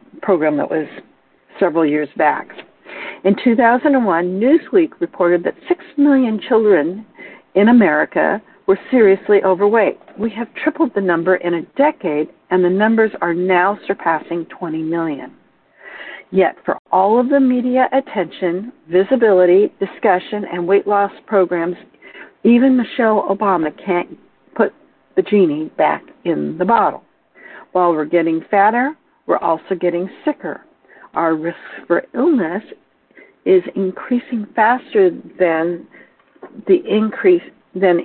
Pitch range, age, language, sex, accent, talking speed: 175-245 Hz, 60-79, English, female, American, 125 wpm